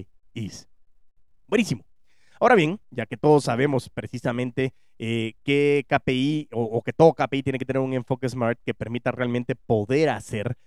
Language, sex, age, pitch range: Spanish, male, 30-49, 120-155 Hz